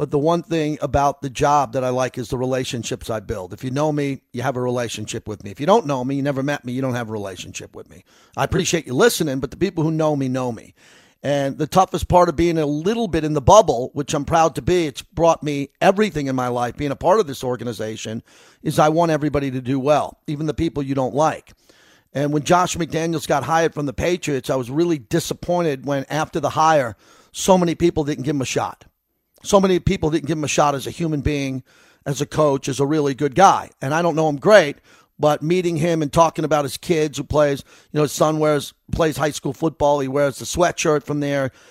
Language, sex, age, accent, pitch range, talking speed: English, male, 40-59, American, 135-170 Hz, 245 wpm